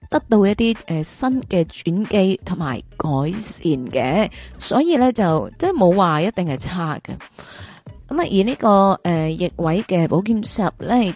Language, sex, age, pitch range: Chinese, female, 20-39, 170-235 Hz